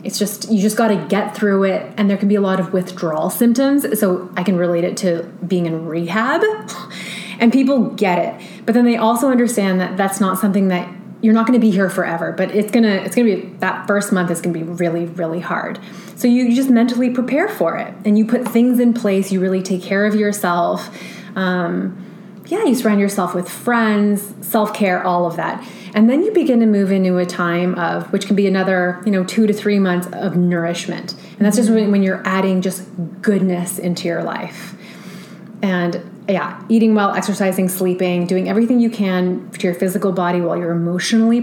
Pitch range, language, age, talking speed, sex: 185-215 Hz, English, 20-39, 205 wpm, female